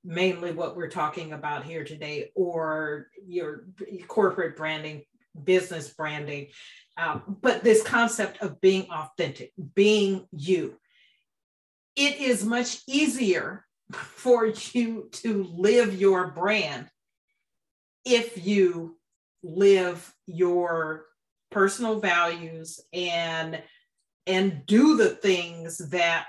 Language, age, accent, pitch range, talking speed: English, 40-59, American, 165-220 Hz, 100 wpm